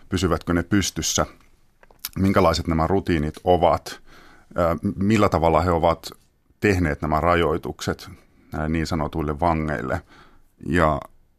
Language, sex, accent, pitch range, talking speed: Finnish, male, native, 80-95 Hz, 95 wpm